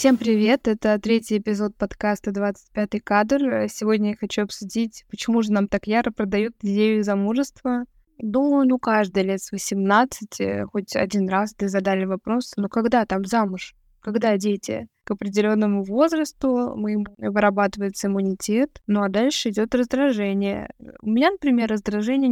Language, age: Russian, 20-39